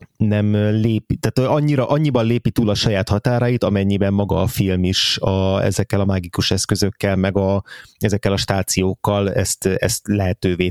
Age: 30-49